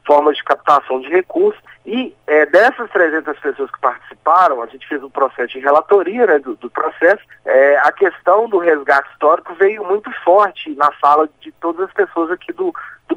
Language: English